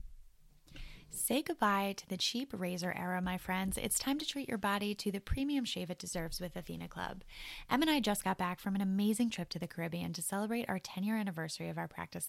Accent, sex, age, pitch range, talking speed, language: American, female, 10-29, 175-220 Hz, 225 wpm, English